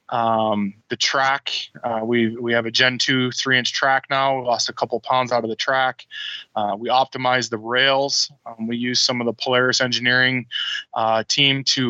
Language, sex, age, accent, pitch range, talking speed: English, male, 20-39, American, 120-135 Hz, 195 wpm